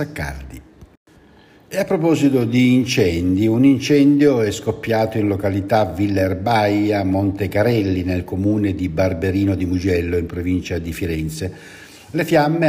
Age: 60-79